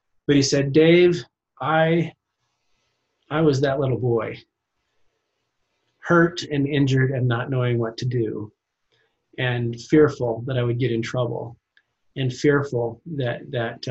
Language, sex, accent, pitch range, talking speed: English, male, American, 120-155 Hz, 135 wpm